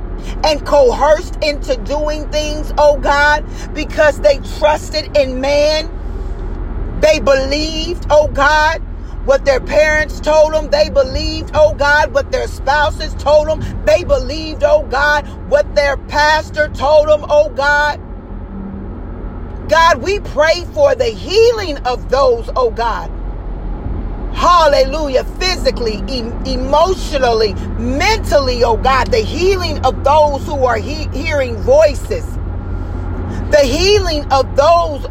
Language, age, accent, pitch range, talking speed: English, 40-59, American, 265-310 Hz, 120 wpm